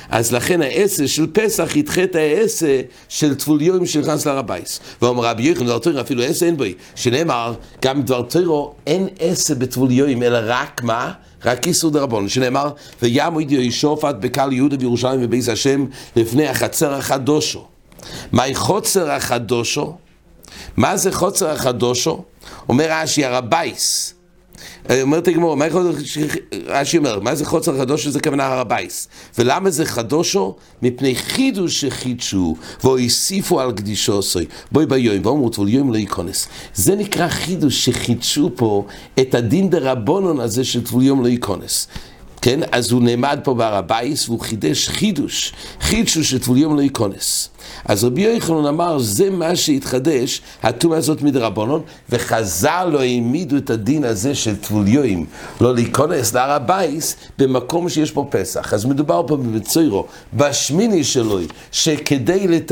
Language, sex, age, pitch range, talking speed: English, male, 60-79, 120-160 Hz, 120 wpm